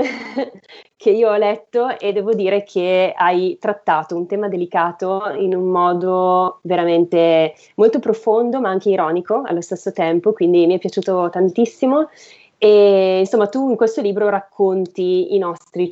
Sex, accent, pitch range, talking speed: female, native, 175-210 Hz, 145 wpm